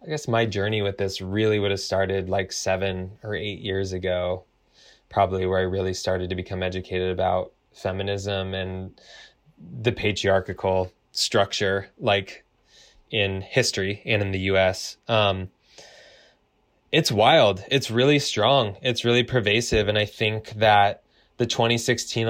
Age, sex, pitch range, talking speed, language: 20-39, male, 100-115 Hz, 140 wpm, English